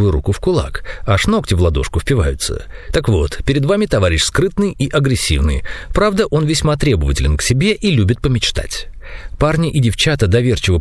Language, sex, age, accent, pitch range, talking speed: Russian, male, 40-59, native, 90-150 Hz, 160 wpm